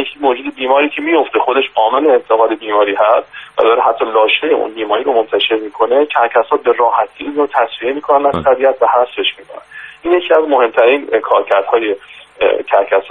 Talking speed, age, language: 160 wpm, 40-59, Persian